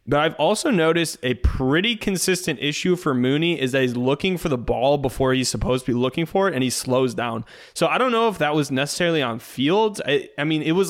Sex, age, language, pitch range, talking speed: male, 20-39, English, 125-150 Hz, 240 wpm